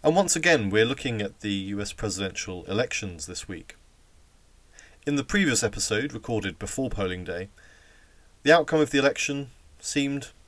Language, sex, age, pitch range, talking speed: English, male, 30-49, 90-120 Hz, 150 wpm